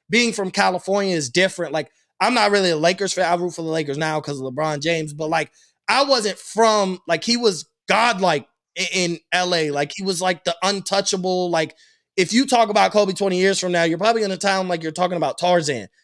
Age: 20-39